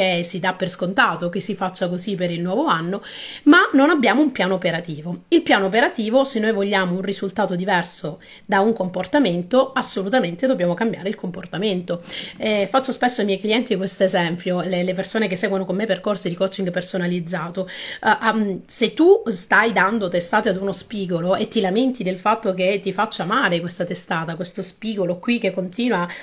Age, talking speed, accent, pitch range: 30-49, 180 wpm, native, 180-235 Hz